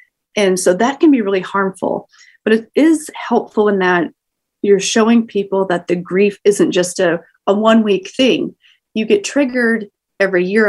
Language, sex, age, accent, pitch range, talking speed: English, female, 30-49, American, 180-235 Hz, 175 wpm